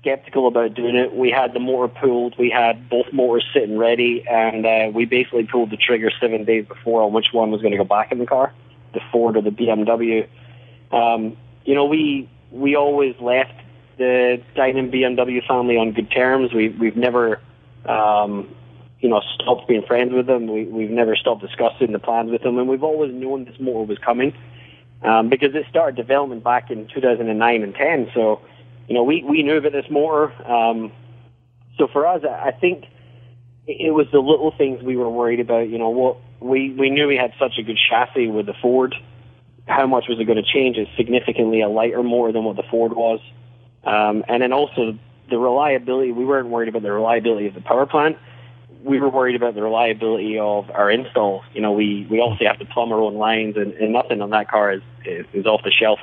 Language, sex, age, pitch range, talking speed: English, male, 30-49, 115-125 Hz, 210 wpm